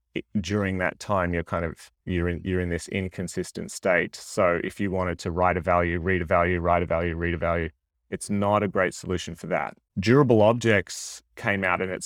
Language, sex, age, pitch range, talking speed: English, male, 30-49, 85-100 Hz, 215 wpm